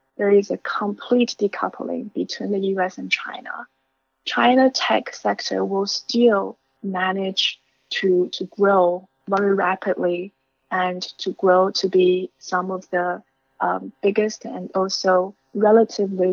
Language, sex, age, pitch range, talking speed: English, female, 20-39, 185-210 Hz, 125 wpm